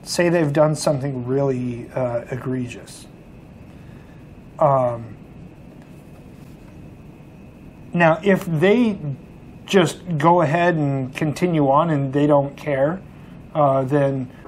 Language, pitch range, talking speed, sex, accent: English, 130-160 Hz, 95 wpm, male, American